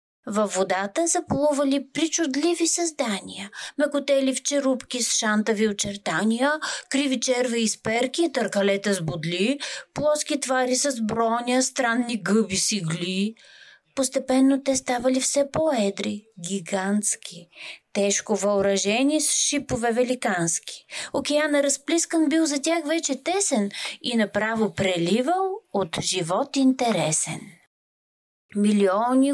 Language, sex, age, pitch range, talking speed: Bulgarian, female, 30-49, 210-300 Hz, 100 wpm